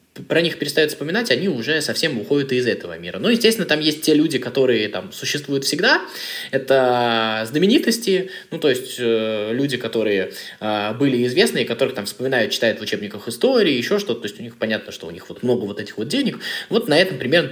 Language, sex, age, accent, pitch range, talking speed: Russian, male, 20-39, native, 140-190 Hz, 195 wpm